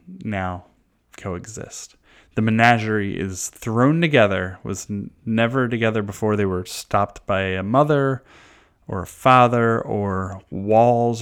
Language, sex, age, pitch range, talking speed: English, male, 20-39, 100-120 Hz, 120 wpm